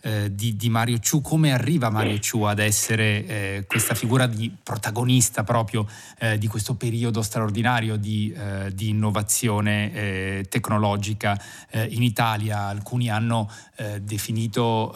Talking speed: 135 wpm